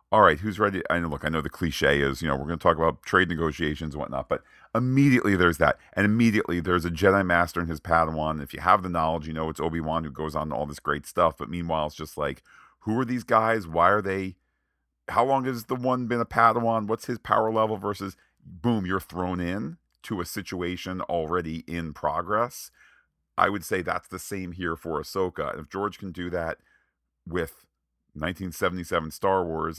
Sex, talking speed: male, 210 wpm